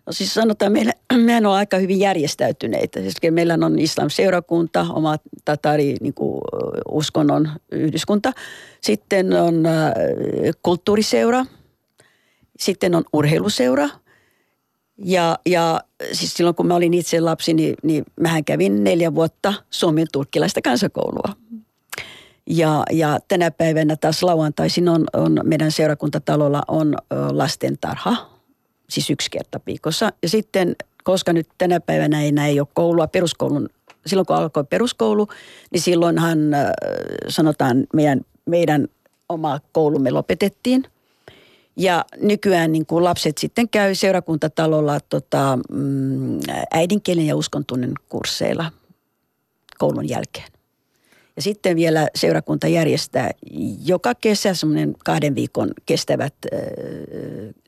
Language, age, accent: Finnish, 40-59, native